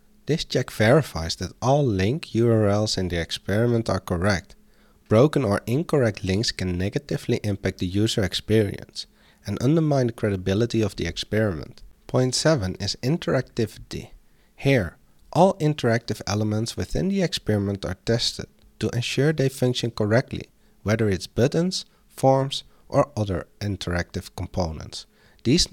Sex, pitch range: male, 95-135 Hz